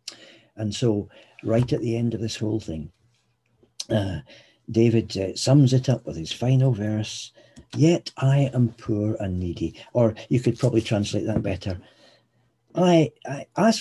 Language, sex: English, male